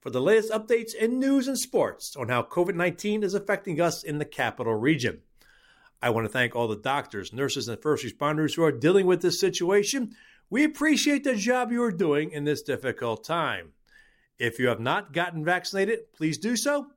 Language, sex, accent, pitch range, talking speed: English, male, American, 140-205 Hz, 195 wpm